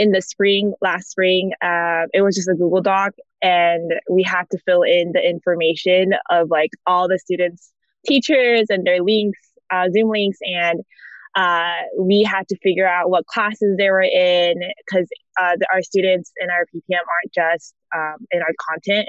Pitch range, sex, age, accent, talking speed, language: 175-205 Hz, female, 20-39, American, 175 wpm, English